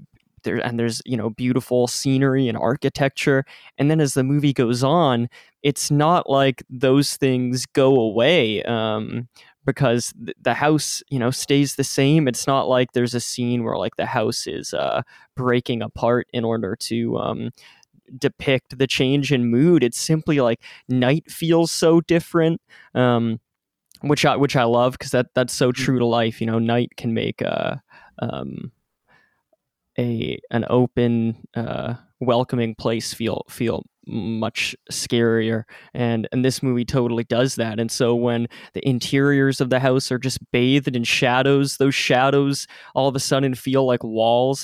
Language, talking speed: English, 165 wpm